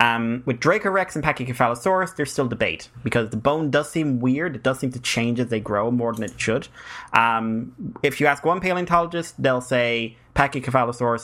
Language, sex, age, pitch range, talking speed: English, male, 30-49, 105-130 Hz, 185 wpm